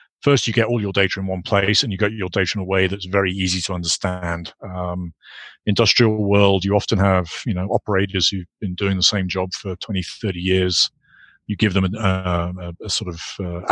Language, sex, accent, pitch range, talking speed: English, male, British, 90-105 Hz, 225 wpm